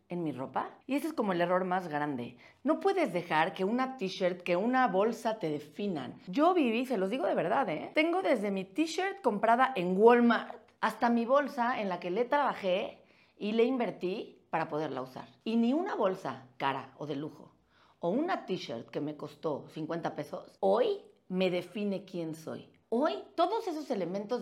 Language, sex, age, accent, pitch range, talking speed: Spanish, female, 40-59, Mexican, 155-240 Hz, 185 wpm